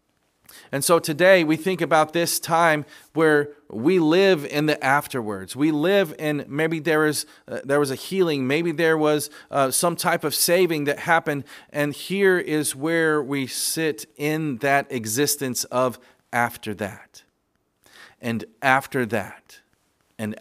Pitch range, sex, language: 125-160 Hz, male, English